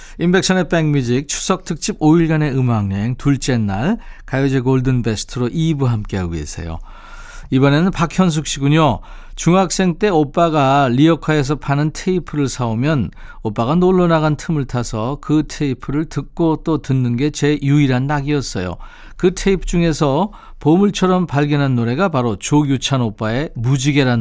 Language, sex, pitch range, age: Korean, male, 120-165 Hz, 40-59